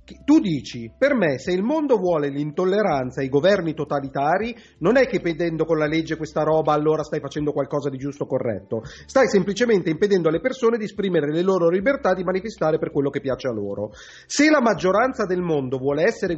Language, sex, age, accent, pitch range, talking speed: Italian, male, 30-49, native, 150-215 Hz, 200 wpm